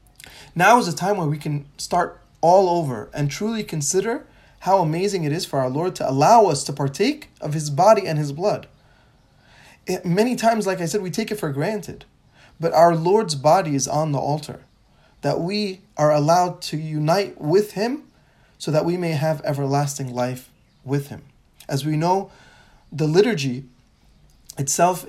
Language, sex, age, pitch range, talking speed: English, male, 20-39, 140-190 Hz, 170 wpm